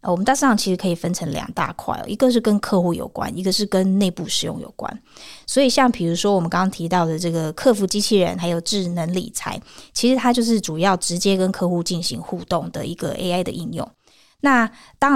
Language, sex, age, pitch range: Chinese, female, 20-39, 170-205 Hz